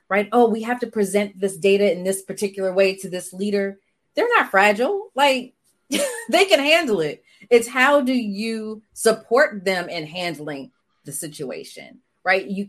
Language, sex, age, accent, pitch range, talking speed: English, female, 30-49, American, 165-215 Hz, 165 wpm